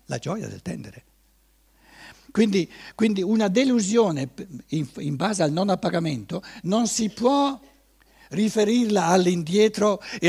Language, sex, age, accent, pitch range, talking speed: Italian, male, 60-79, native, 140-220 Hz, 115 wpm